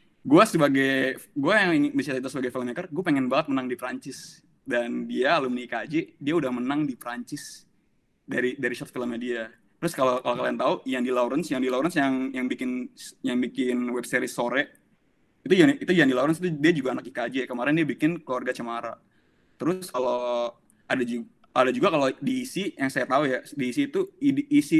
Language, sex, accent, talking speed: Indonesian, male, native, 185 wpm